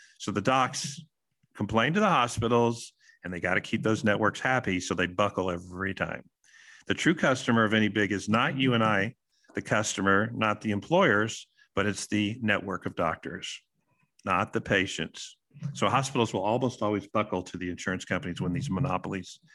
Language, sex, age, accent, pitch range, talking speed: English, male, 50-69, American, 100-140 Hz, 180 wpm